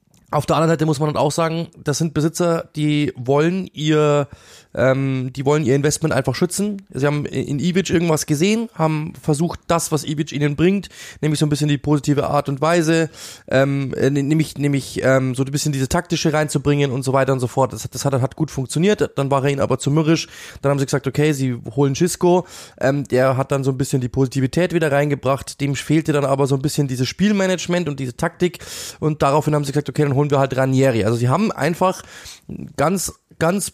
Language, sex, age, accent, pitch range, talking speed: German, male, 20-39, German, 135-160 Hz, 215 wpm